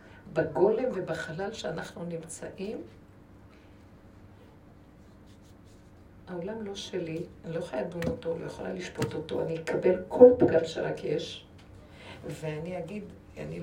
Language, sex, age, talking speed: Hebrew, female, 60-79, 110 wpm